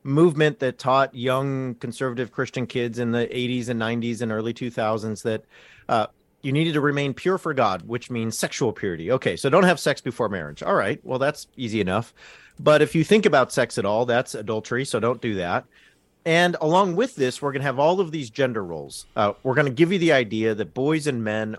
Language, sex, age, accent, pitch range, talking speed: English, male, 40-59, American, 115-155 Hz, 220 wpm